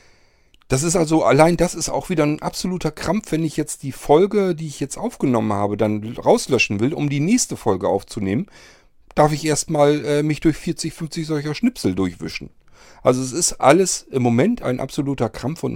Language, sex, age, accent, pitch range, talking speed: German, male, 40-59, German, 115-155 Hz, 190 wpm